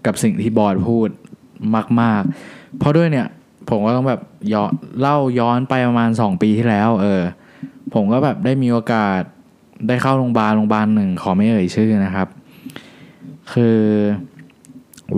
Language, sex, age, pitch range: Thai, male, 20-39, 105-125 Hz